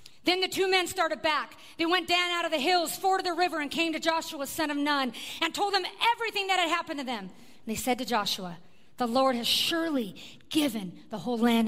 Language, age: English, 50-69